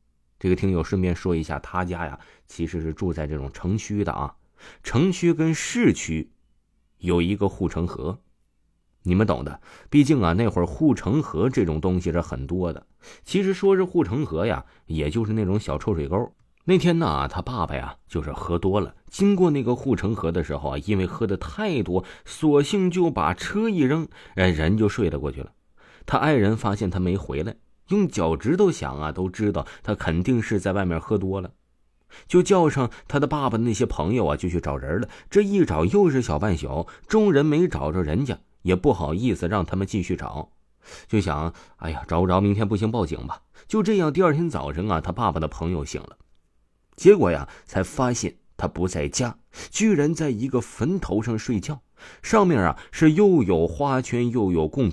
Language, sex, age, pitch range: Chinese, male, 30-49, 85-140 Hz